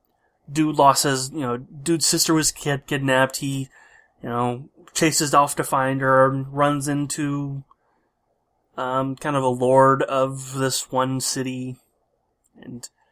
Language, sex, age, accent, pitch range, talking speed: English, male, 20-39, American, 130-145 Hz, 135 wpm